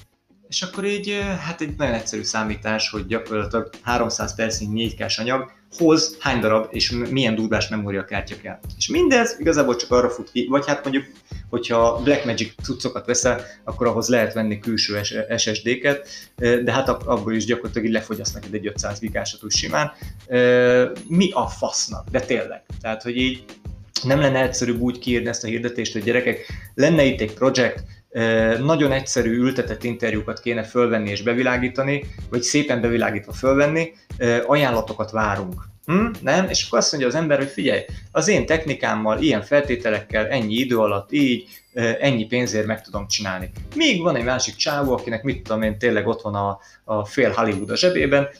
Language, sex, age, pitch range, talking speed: Hungarian, male, 20-39, 105-130 Hz, 160 wpm